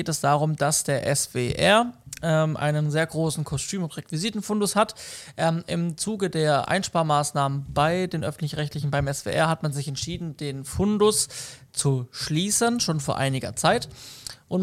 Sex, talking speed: male, 150 wpm